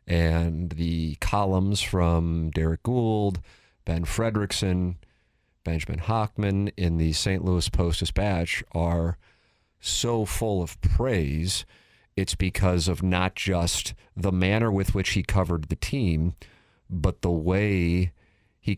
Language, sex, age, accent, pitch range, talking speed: English, male, 40-59, American, 85-105 Hz, 120 wpm